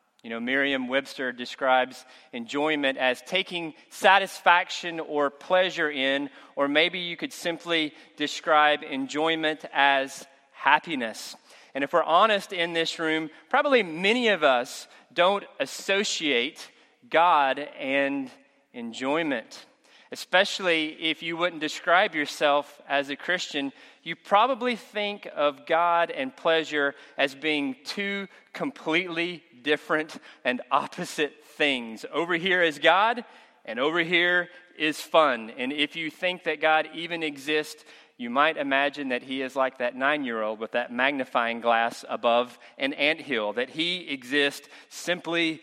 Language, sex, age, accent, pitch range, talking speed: English, male, 30-49, American, 140-185 Hz, 130 wpm